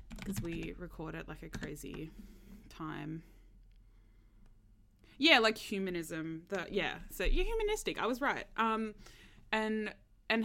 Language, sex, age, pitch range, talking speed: English, female, 20-39, 155-210 Hz, 125 wpm